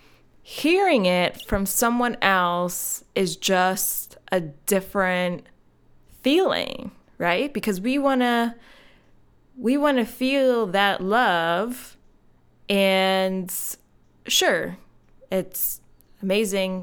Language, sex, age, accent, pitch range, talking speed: English, female, 20-39, American, 175-230 Hz, 90 wpm